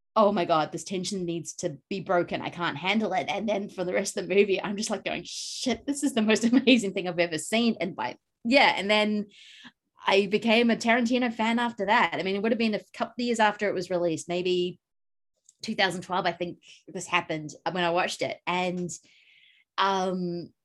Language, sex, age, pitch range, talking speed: English, female, 30-49, 175-230 Hz, 210 wpm